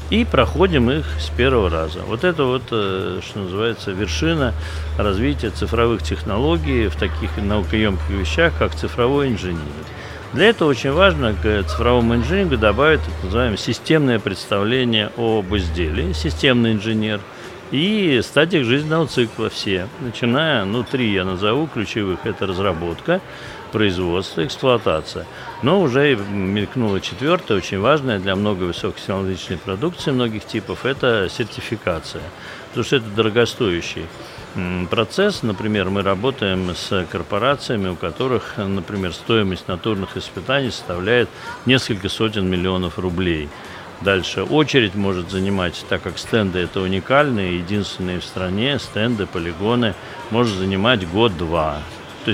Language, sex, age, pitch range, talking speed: Russian, male, 60-79, 90-120 Hz, 125 wpm